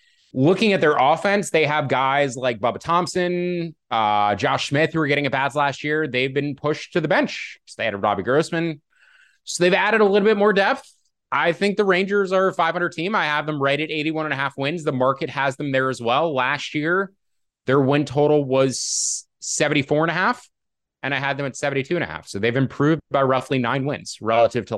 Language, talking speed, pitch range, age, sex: English, 225 wpm, 120-160 Hz, 20-39, male